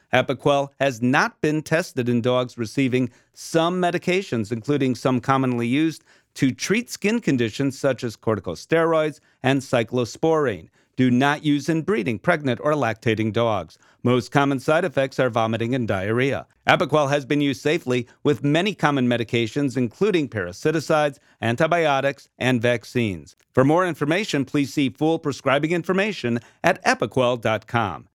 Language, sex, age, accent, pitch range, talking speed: English, male, 40-59, American, 120-155 Hz, 135 wpm